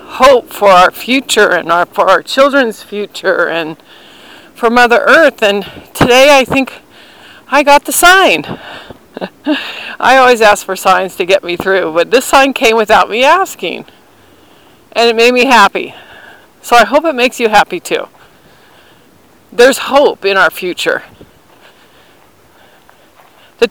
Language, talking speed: English, 140 wpm